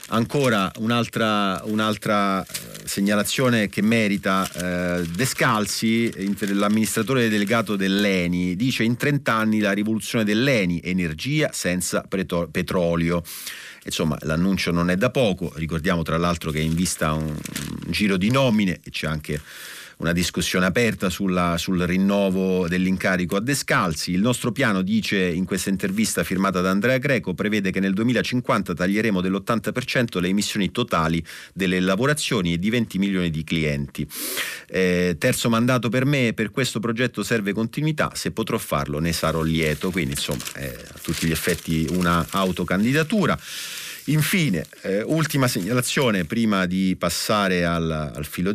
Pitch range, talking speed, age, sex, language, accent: 90-115 Hz, 145 wpm, 30-49, male, Italian, native